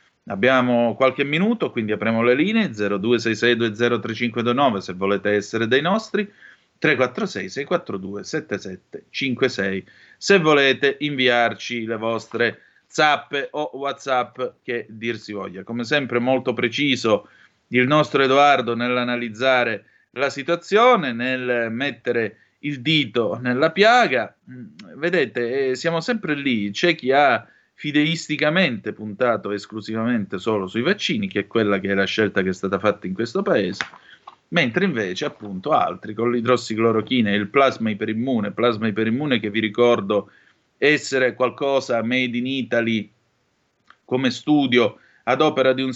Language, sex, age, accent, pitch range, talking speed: Italian, male, 30-49, native, 115-135 Hz, 125 wpm